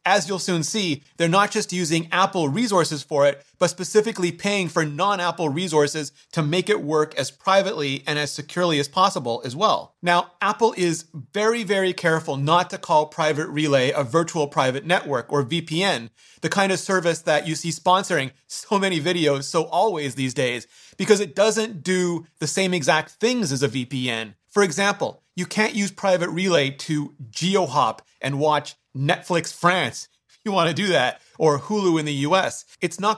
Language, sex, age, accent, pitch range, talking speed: English, male, 30-49, American, 150-190 Hz, 180 wpm